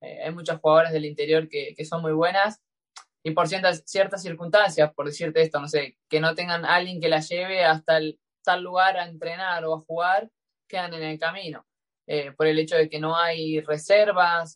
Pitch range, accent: 155-180 Hz, Argentinian